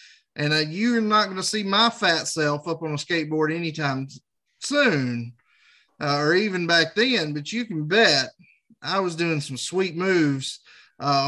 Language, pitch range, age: English, 155-210 Hz, 20-39